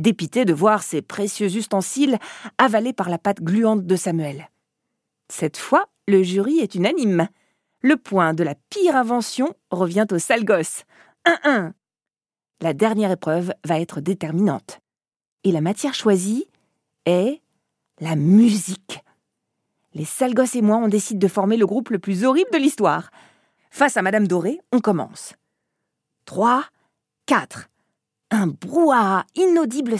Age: 40-59